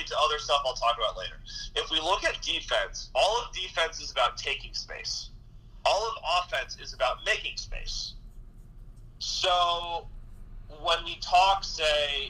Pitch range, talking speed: 115-155 Hz, 150 wpm